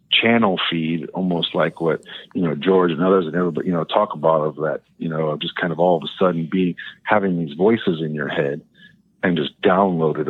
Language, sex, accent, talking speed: English, male, American, 215 wpm